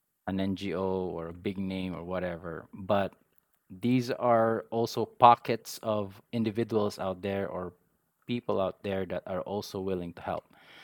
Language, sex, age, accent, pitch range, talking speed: English, male, 20-39, Filipino, 100-115 Hz, 150 wpm